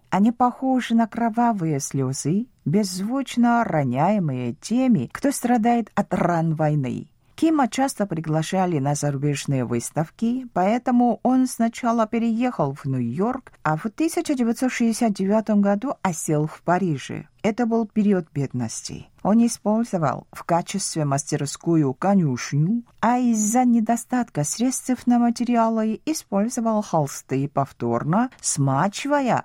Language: Russian